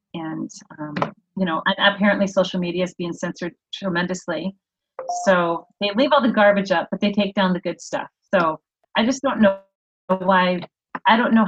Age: 30-49